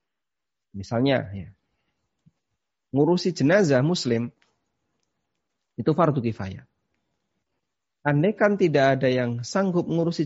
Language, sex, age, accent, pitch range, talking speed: Indonesian, male, 30-49, native, 120-160 Hz, 90 wpm